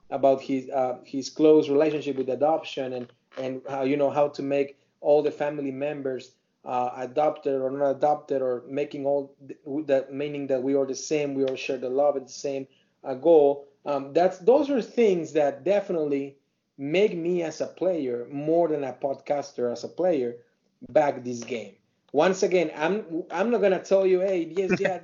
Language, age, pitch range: English, 30-49, 135-175 Hz